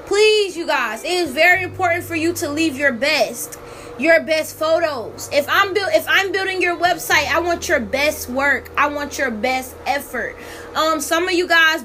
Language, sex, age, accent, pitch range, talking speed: English, female, 20-39, American, 270-335 Hz, 185 wpm